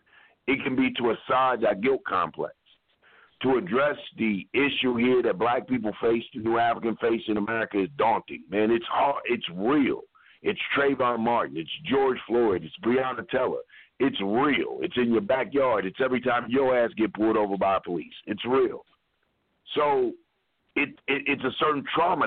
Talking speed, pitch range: 170 wpm, 110-160 Hz